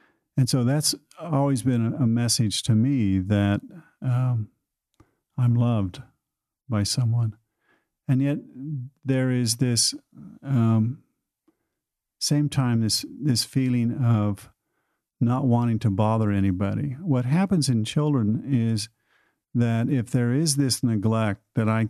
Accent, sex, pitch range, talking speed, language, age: American, male, 110-130 Hz, 125 wpm, English, 50-69